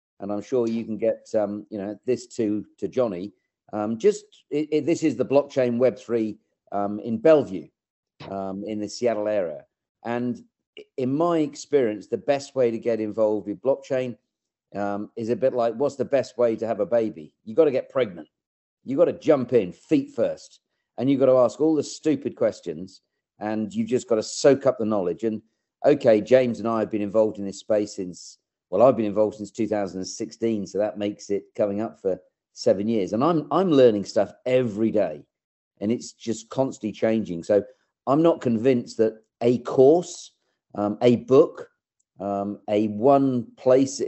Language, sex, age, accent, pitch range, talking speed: English, male, 50-69, British, 105-130 Hz, 190 wpm